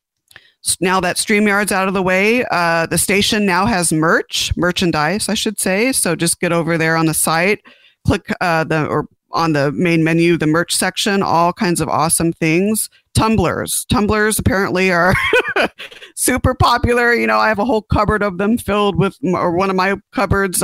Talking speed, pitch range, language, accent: 185 wpm, 160-195 Hz, English, American